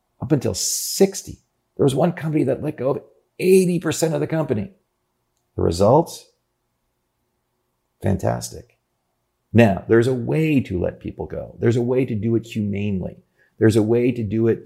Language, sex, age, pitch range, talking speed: English, male, 50-69, 90-130 Hz, 160 wpm